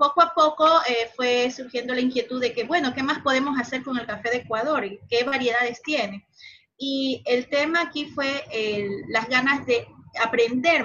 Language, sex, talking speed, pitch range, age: English, female, 190 wpm, 220-270 Hz, 30-49